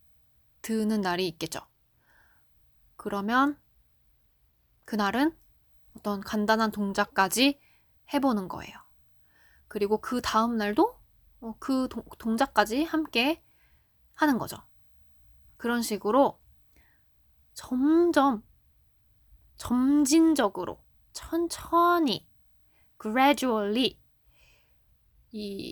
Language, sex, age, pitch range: Korean, female, 20-39, 210-290 Hz